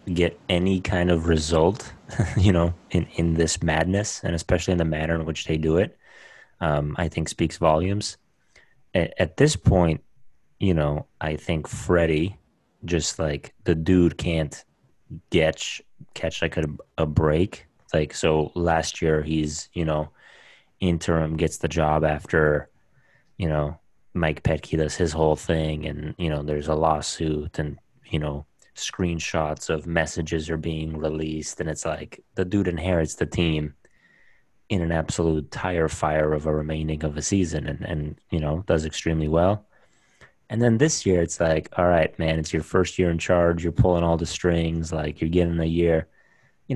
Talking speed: 170 wpm